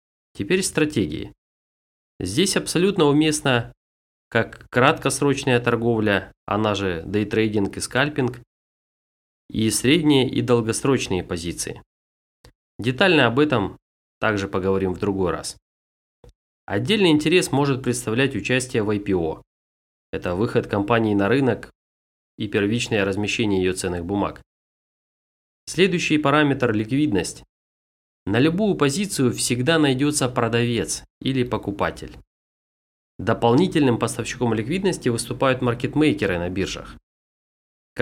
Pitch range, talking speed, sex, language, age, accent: 95-140 Hz, 100 wpm, male, Russian, 30-49, native